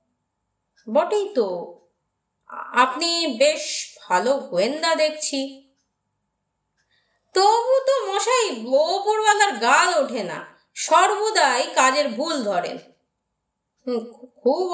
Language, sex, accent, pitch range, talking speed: Bengali, female, native, 275-420 Hz, 60 wpm